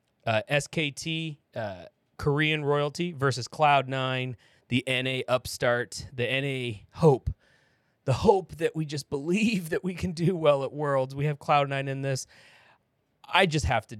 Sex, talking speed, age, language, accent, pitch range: male, 160 wpm, 30-49, English, American, 120-155 Hz